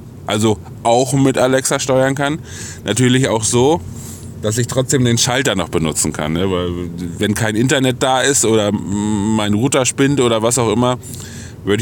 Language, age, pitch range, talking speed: German, 20-39, 95-125 Hz, 155 wpm